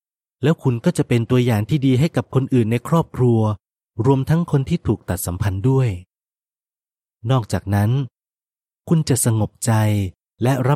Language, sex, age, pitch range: Thai, male, 30-49, 105-135 Hz